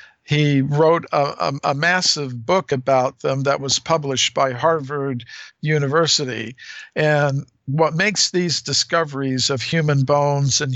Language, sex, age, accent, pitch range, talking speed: English, male, 50-69, American, 130-150 Hz, 135 wpm